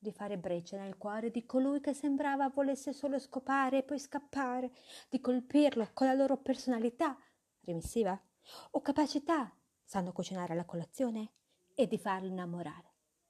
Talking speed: 145 wpm